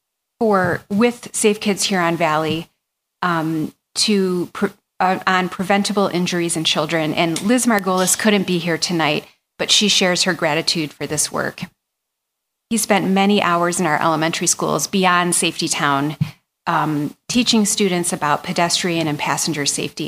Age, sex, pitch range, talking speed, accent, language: 30-49, female, 165-200 Hz, 150 wpm, American, English